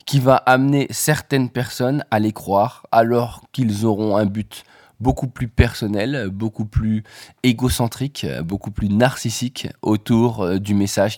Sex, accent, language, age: male, French, French, 20-39